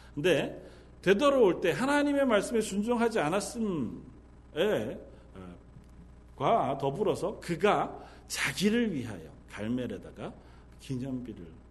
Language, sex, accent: Korean, male, native